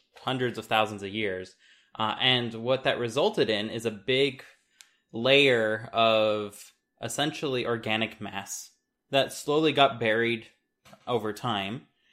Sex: male